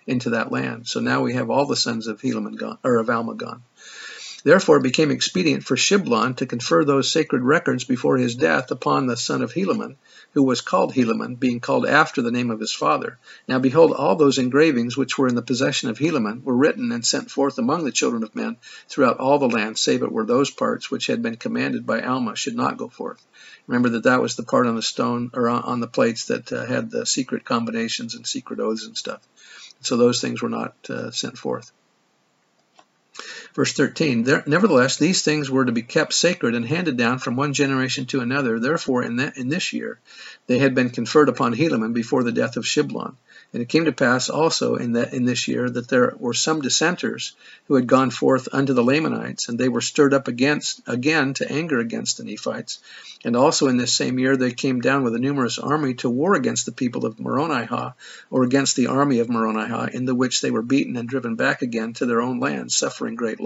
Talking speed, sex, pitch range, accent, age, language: 220 wpm, male, 120-150 Hz, American, 50-69, English